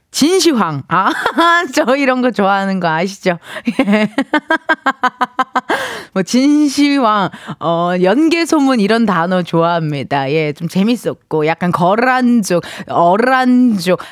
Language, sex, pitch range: Korean, female, 180-295 Hz